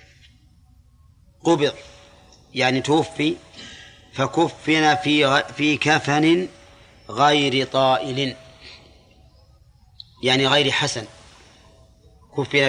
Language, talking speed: Arabic, 65 wpm